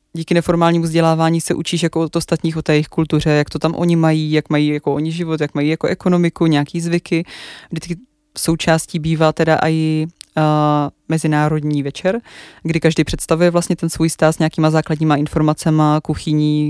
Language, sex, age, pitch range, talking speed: Czech, female, 20-39, 155-170 Hz, 175 wpm